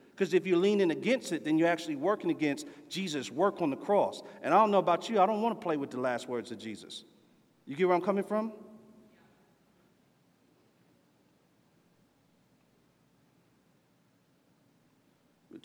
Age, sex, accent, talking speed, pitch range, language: 50-69, male, American, 155 wpm, 155-200 Hz, English